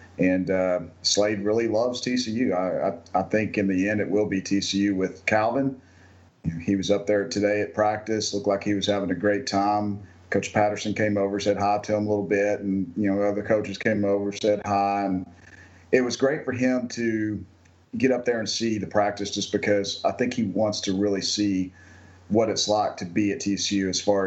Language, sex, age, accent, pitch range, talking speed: English, male, 40-59, American, 95-105 Hz, 215 wpm